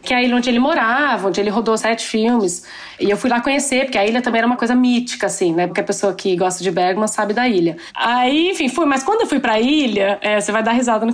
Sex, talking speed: female, 275 wpm